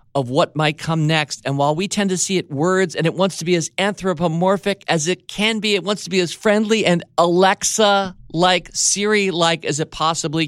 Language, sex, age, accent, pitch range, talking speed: English, male, 50-69, American, 140-180 Hz, 205 wpm